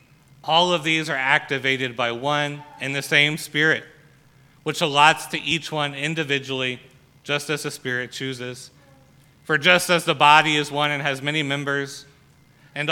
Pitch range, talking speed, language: 140-155 Hz, 160 wpm, English